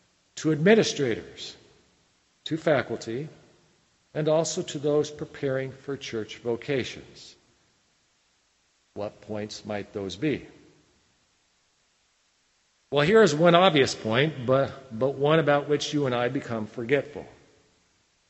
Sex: male